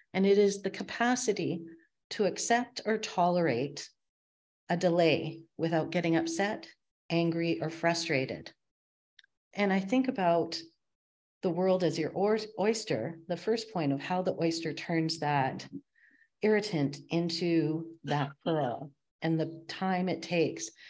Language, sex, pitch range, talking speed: English, female, 150-185 Hz, 125 wpm